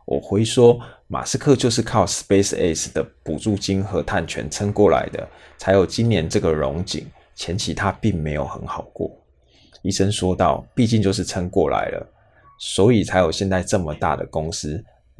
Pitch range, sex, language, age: 85-110 Hz, male, Chinese, 20-39